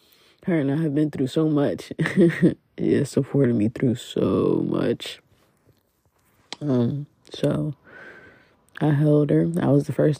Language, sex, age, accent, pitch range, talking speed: English, female, 20-39, American, 130-165 Hz, 135 wpm